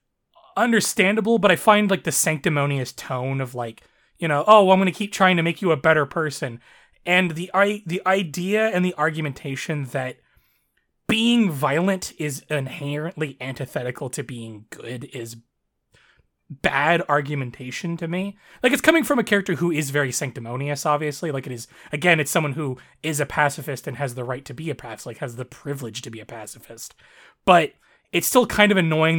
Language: English